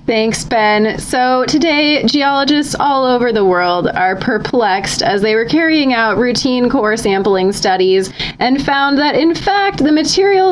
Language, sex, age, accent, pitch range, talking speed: English, female, 20-39, American, 195-270 Hz, 155 wpm